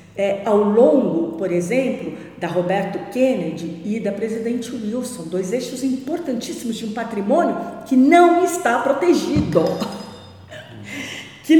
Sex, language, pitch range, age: female, Portuguese, 170-240 Hz, 50-69